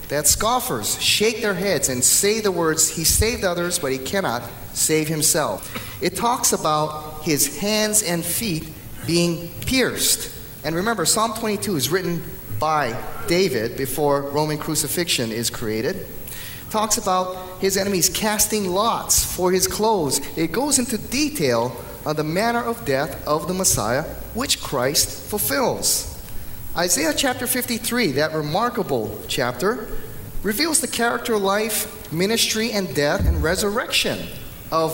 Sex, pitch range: male, 140-205 Hz